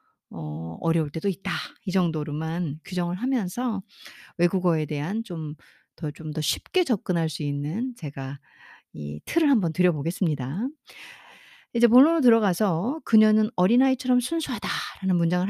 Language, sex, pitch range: Korean, female, 165-260 Hz